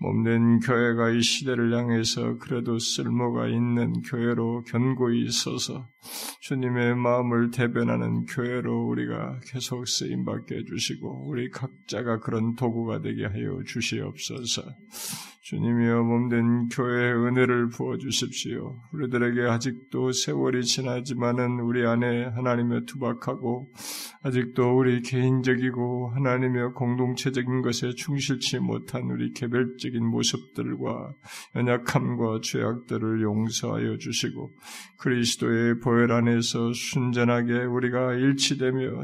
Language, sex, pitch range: Korean, male, 120-130 Hz